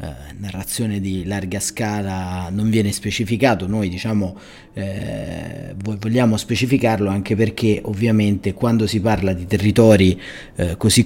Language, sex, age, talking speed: Italian, male, 30-49, 120 wpm